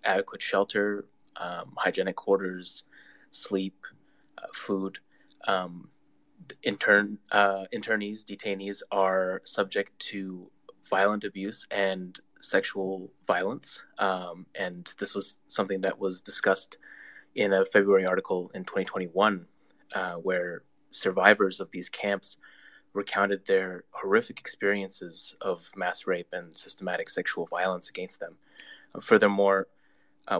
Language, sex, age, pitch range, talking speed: English, male, 20-39, 95-105 Hz, 115 wpm